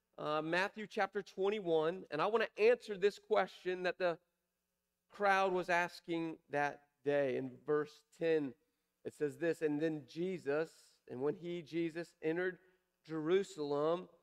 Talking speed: 140 wpm